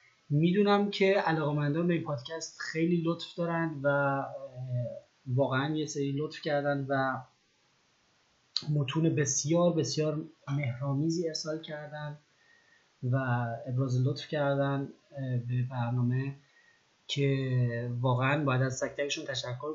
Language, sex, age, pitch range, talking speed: Persian, male, 30-49, 120-145 Hz, 105 wpm